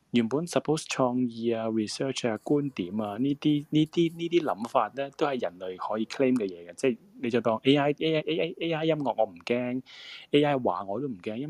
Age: 20-39